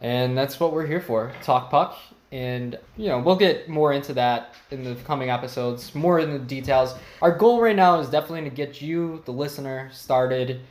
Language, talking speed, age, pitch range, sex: English, 200 wpm, 20-39, 120-150 Hz, male